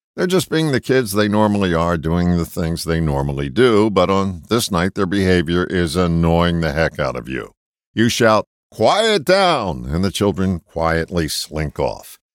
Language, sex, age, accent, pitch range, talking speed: English, male, 60-79, American, 85-125 Hz, 180 wpm